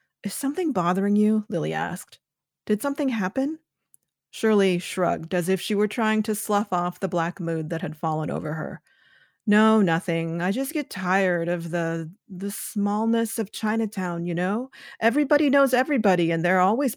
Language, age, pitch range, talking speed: English, 40-59, 175-220 Hz, 165 wpm